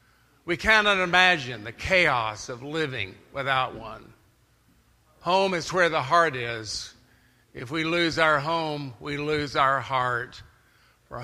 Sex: male